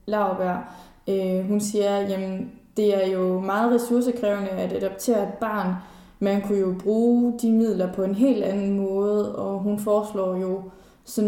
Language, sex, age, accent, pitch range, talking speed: Danish, female, 20-39, native, 190-215 Hz, 160 wpm